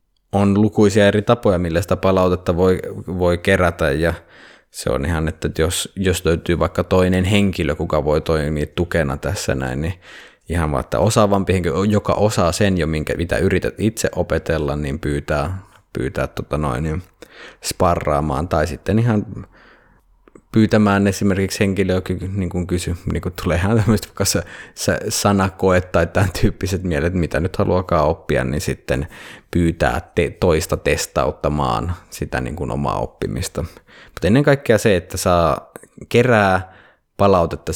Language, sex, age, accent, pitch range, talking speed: Finnish, male, 20-39, native, 80-95 Hz, 140 wpm